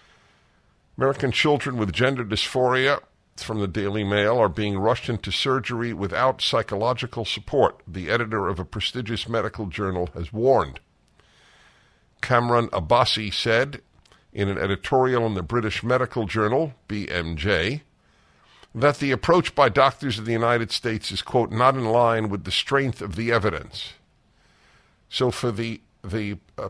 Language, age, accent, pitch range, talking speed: English, 50-69, American, 85-120 Hz, 140 wpm